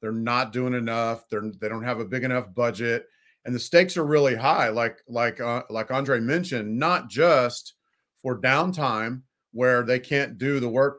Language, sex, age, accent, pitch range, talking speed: English, male, 40-59, American, 110-130 Hz, 175 wpm